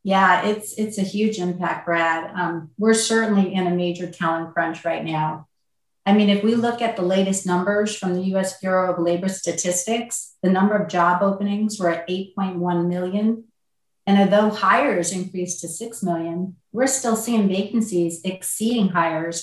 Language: English